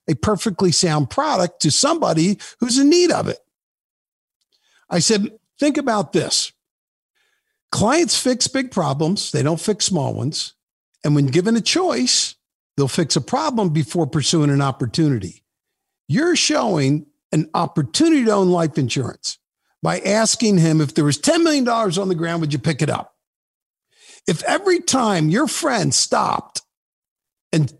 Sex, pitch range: male, 170-265 Hz